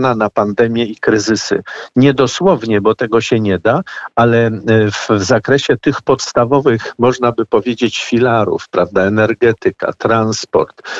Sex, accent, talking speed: male, native, 130 wpm